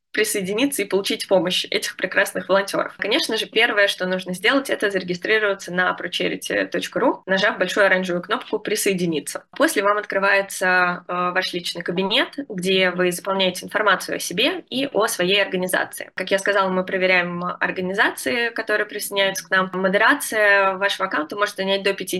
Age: 20-39